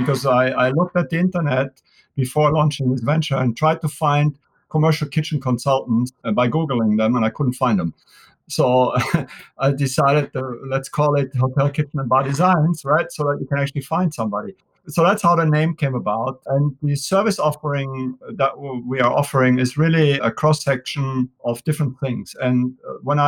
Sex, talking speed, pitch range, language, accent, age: male, 180 wpm, 125-150 Hz, English, German, 50-69